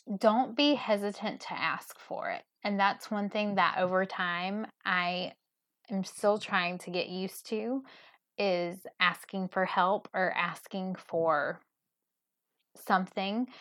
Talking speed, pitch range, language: 130 wpm, 175-210 Hz, English